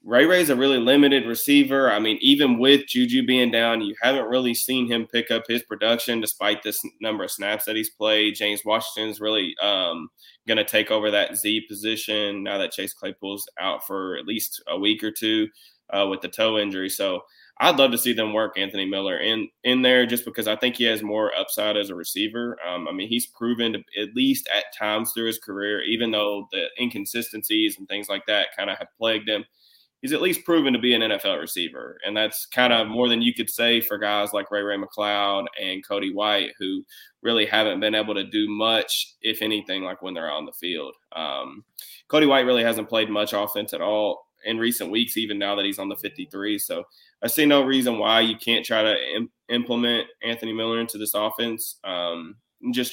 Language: English